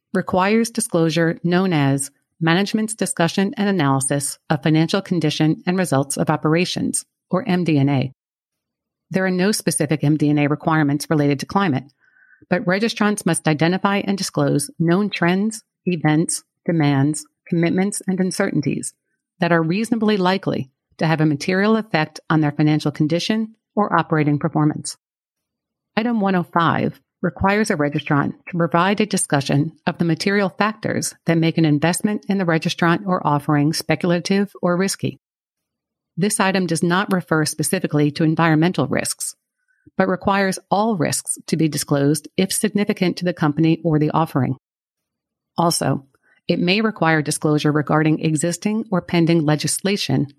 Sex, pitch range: female, 155-190 Hz